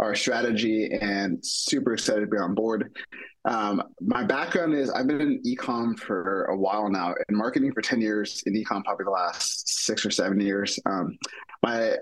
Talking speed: 185 wpm